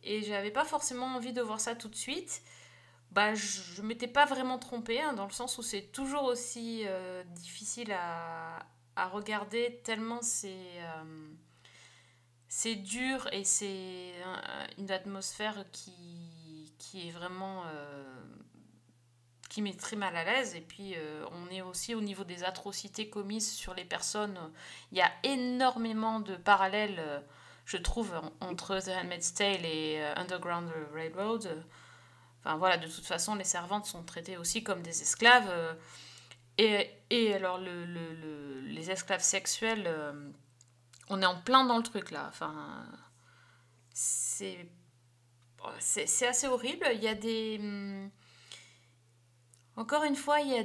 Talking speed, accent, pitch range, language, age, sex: 160 wpm, French, 160-220 Hz, French, 30-49, female